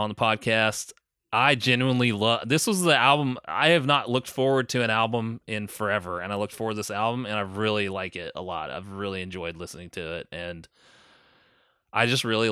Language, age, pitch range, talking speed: English, 20-39, 100-120 Hz, 210 wpm